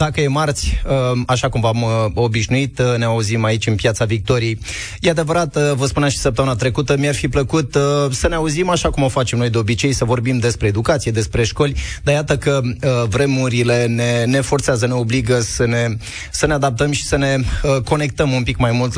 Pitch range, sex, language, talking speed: 115-140 Hz, male, Romanian, 195 wpm